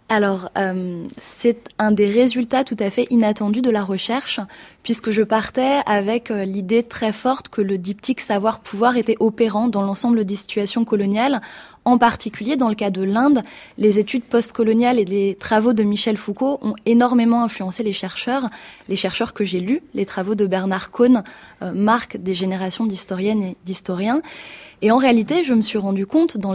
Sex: female